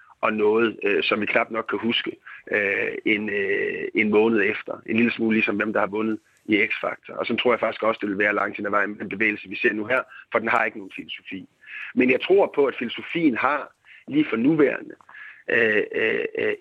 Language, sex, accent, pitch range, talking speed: Danish, male, native, 275-445 Hz, 230 wpm